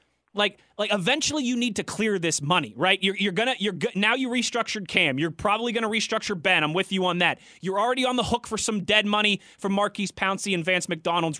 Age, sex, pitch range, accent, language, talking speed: 20-39, male, 195-255 Hz, American, English, 230 wpm